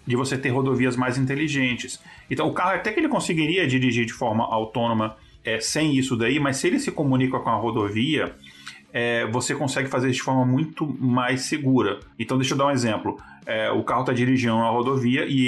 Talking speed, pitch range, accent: 205 wpm, 125-145 Hz, Brazilian